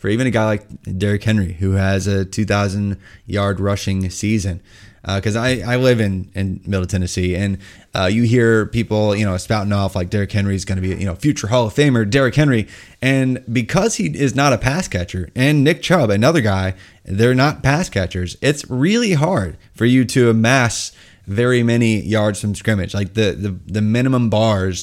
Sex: male